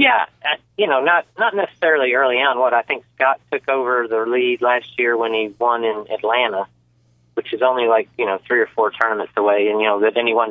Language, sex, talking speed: English, male, 230 wpm